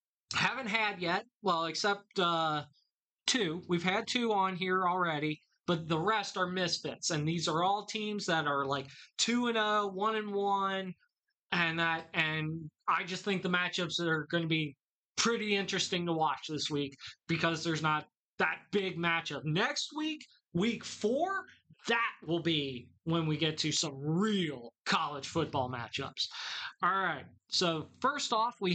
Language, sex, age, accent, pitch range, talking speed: English, male, 20-39, American, 165-215 Hz, 160 wpm